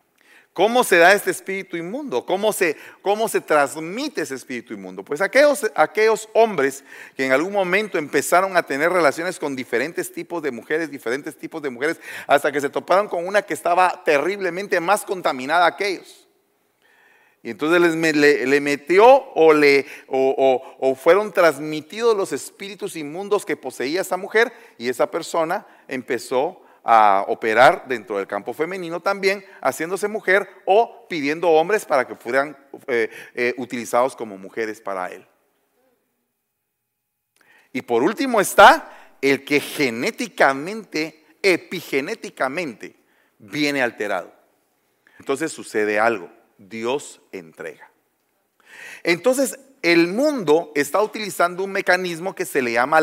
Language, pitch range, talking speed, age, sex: Spanish, 140-205 Hz, 130 wpm, 40-59, male